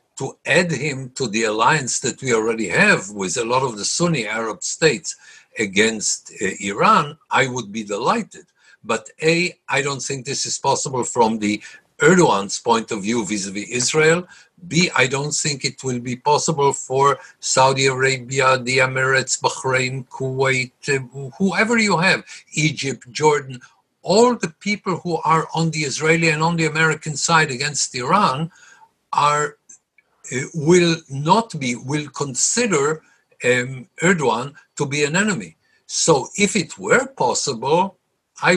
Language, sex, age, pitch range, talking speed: Hebrew, male, 60-79, 130-180 Hz, 150 wpm